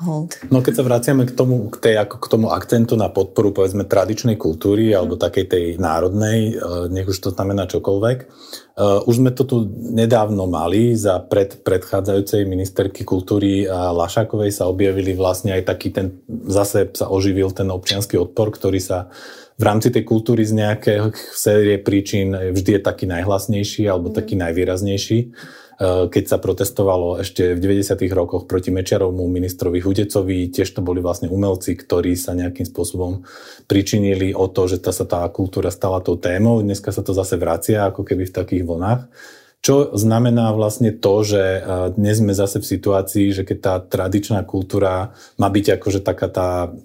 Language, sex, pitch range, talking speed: Slovak, male, 95-110 Hz, 165 wpm